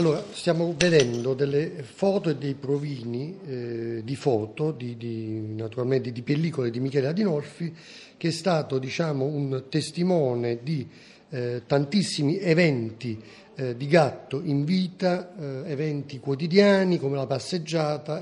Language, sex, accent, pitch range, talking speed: Italian, male, native, 125-165 Hz, 130 wpm